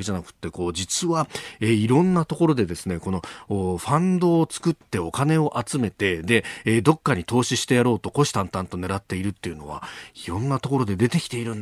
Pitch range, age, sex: 95-135 Hz, 40-59, male